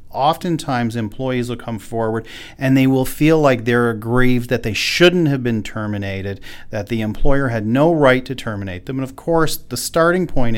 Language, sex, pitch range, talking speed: English, male, 105-135 Hz, 185 wpm